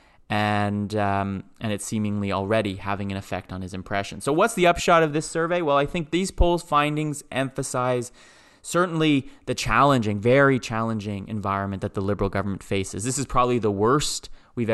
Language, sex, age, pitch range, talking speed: English, male, 30-49, 105-135 Hz, 175 wpm